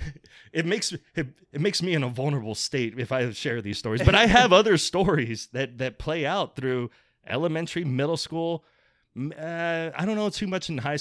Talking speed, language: 195 wpm, English